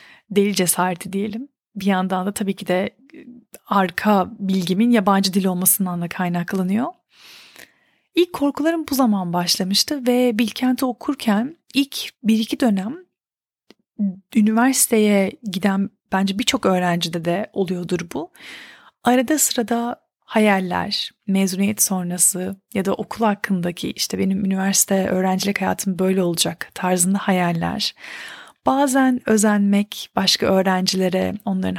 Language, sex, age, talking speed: Turkish, female, 30-49, 110 wpm